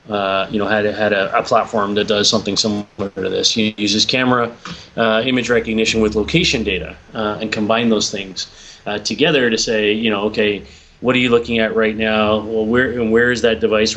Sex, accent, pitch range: male, American, 105-125 Hz